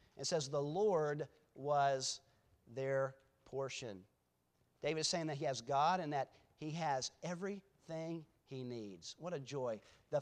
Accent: American